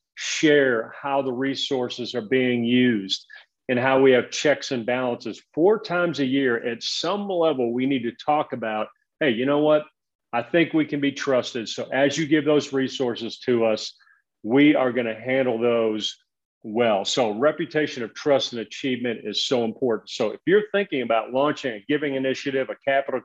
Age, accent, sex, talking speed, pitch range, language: 40-59, American, male, 185 wpm, 120-145 Hz, English